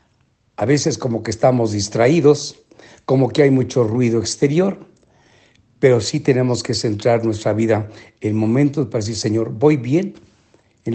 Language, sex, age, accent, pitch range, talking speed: English, male, 60-79, Mexican, 110-140 Hz, 150 wpm